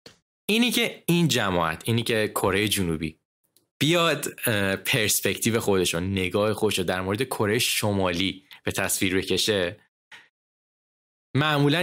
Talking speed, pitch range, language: 105 wpm, 95-130 Hz, Persian